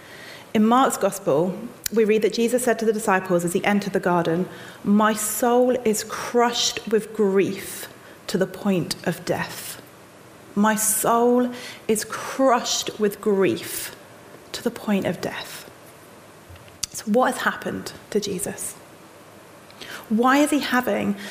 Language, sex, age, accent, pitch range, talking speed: English, female, 30-49, British, 190-245 Hz, 135 wpm